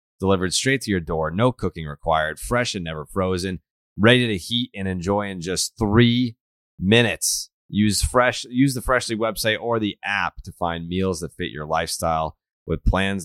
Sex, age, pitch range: male, 30-49, 85-125 Hz